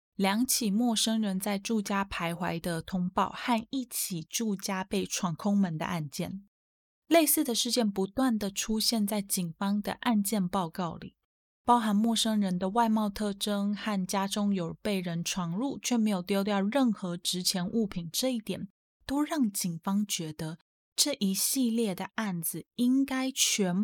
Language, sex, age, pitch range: Chinese, female, 20-39, 185-235 Hz